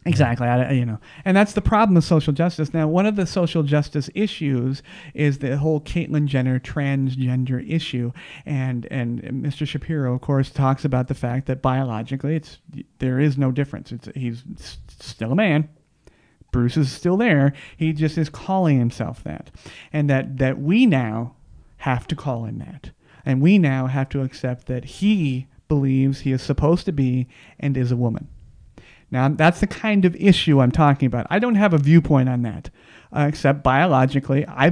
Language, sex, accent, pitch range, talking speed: English, male, American, 130-165 Hz, 180 wpm